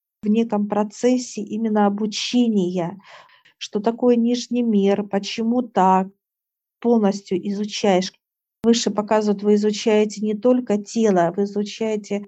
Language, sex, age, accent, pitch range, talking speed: Russian, female, 50-69, native, 200-225 Hz, 110 wpm